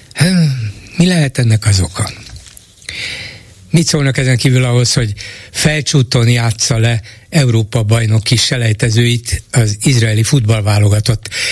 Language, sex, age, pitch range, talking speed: Hungarian, male, 60-79, 110-135 Hz, 105 wpm